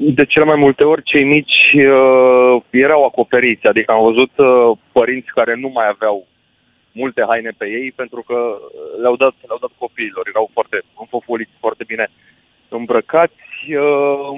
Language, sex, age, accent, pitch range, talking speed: Romanian, male, 30-49, native, 120-155 Hz, 150 wpm